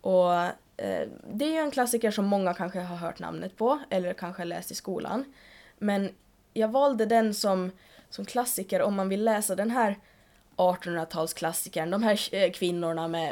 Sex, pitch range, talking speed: female, 175-220 Hz, 165 wpm